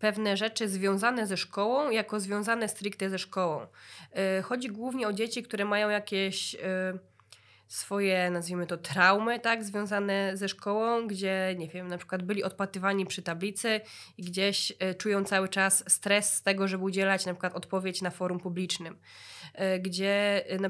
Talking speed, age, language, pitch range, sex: 150 wpm, 20-39, Polish, 185-205 Hz, female